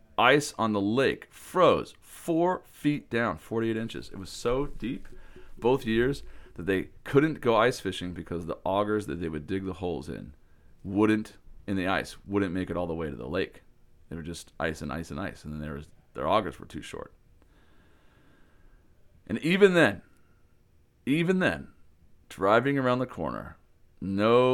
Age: 40-59